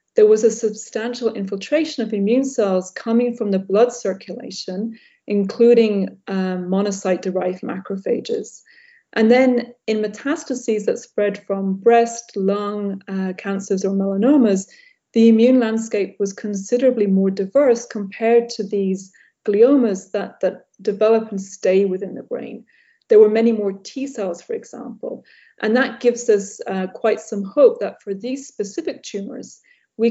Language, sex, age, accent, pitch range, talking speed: English, female, 30-49, British, 195-240 Hz, 140 wpm